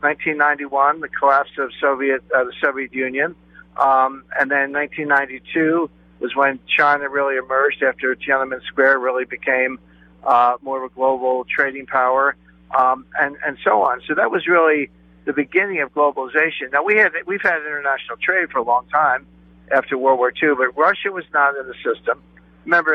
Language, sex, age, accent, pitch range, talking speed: English, male, 50-69, American, 125-155 Hz, 175 wpm